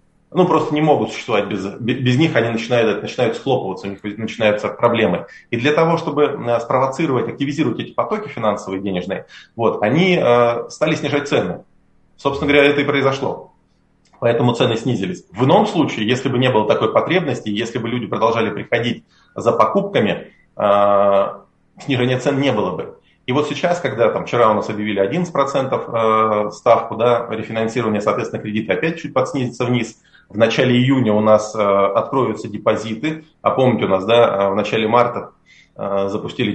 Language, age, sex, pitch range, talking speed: Russian, 30-49, male, 110-140 Hz, 155 wpm